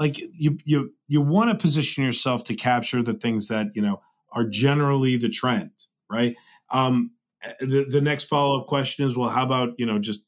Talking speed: 195 wpm